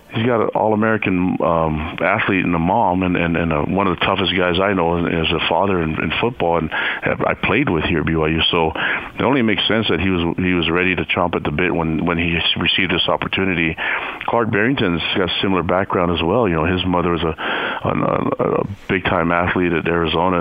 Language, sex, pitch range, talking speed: English, male, 80-90 Hz, 230 wpm